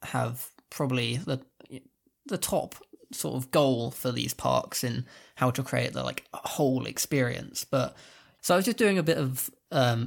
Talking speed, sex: 175 wpm, male